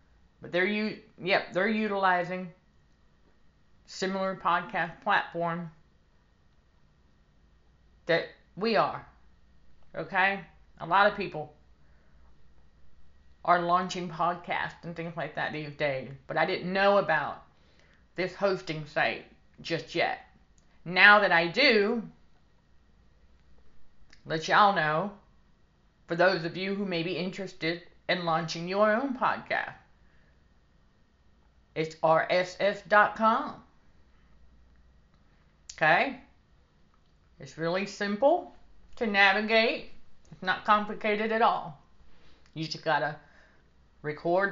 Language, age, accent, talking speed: English, 40-59, American, 95 wpm